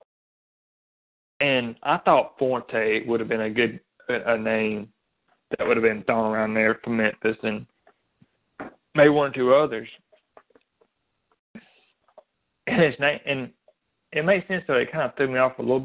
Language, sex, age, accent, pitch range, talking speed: English, male, 30-49, American, 115-130 Hz, 165 wpm